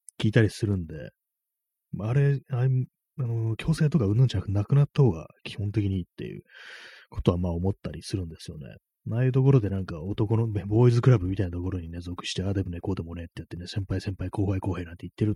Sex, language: male, Japanese